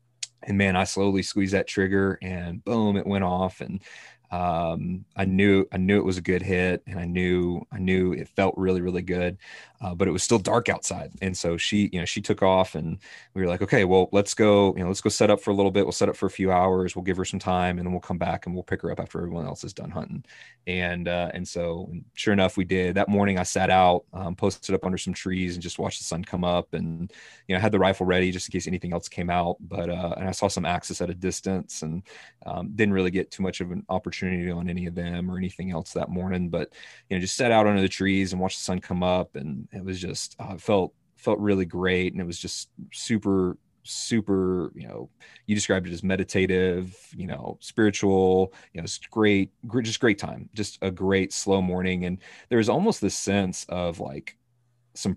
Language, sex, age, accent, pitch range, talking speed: English, male, 20-39, American, 90-100 Hz, 245 wpm